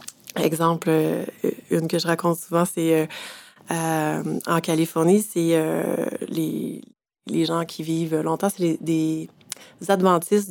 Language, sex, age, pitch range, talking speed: French, female, 30-49, 160-185 Hz, 125 wpm